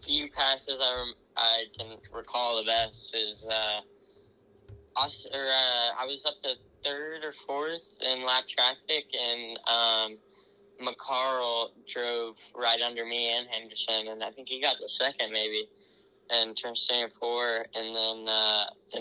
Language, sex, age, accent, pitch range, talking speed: English, male, 10-29, American, 110-130 Hz, 150 wpm